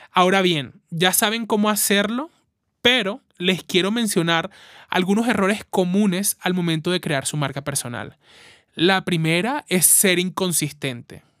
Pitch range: 165-200 Hz